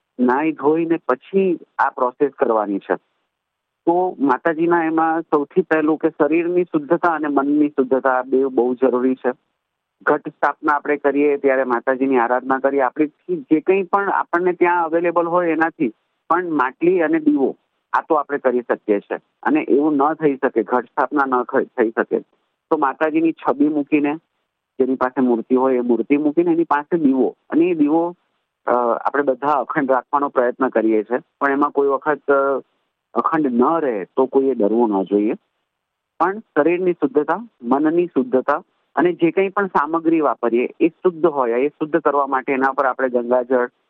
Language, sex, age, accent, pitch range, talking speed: Gujarati, male, 50-69, native, 130-165 Hz, 140 wpm